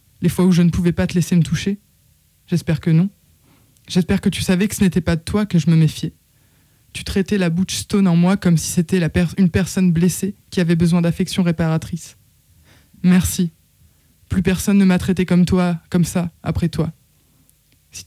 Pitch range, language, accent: 165-190 Hz, French, French